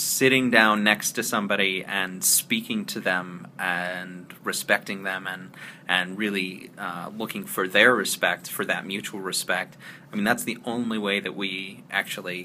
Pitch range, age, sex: 95-110 Hz, 30-49, male